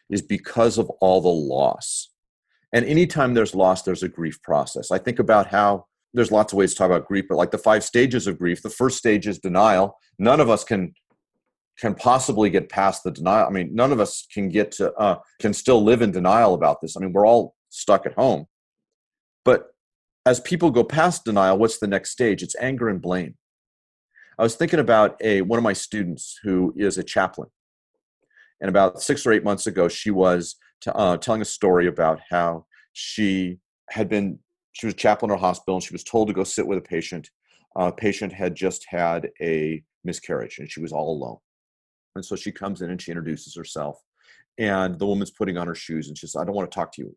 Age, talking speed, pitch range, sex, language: 40-59, 220 wpm, 90-115 Hz, male, English